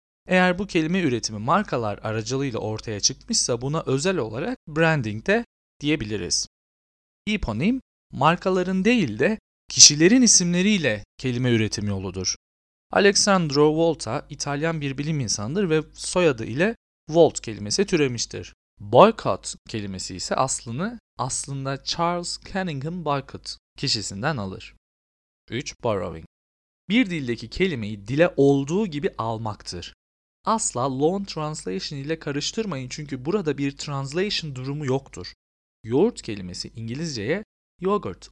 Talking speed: 110 wpm